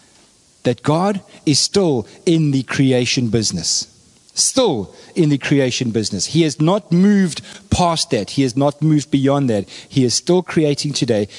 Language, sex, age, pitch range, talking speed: English, male, 40-59, 120-155 Hz, 160 wpm